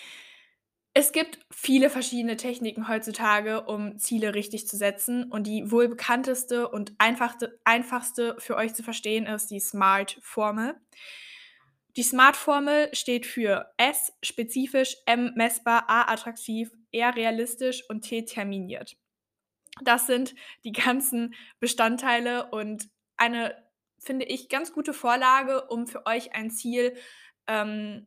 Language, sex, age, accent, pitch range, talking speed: German, female, 10-29, German, 220-255 Hz, 115 wpm